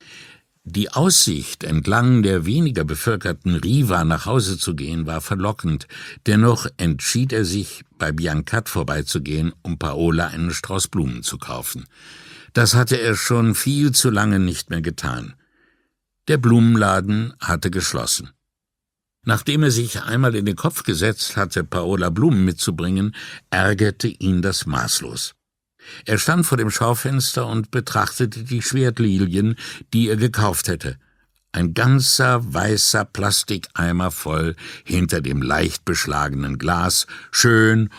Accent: German